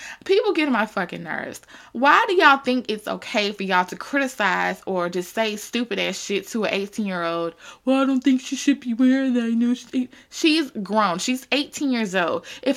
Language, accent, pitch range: English, American, 220-305 Hz